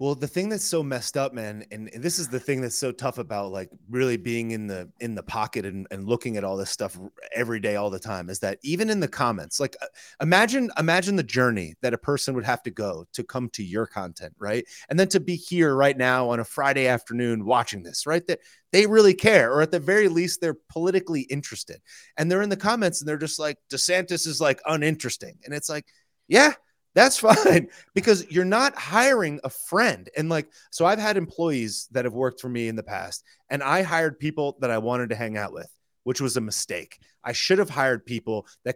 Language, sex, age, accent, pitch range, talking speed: English, male, 30-49, American, 120-165 Hz, 230 wpm